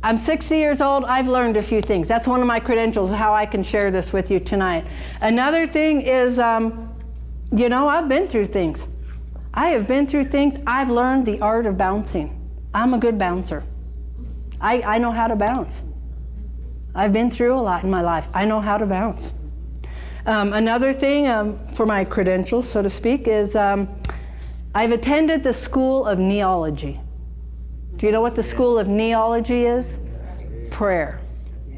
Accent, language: American, English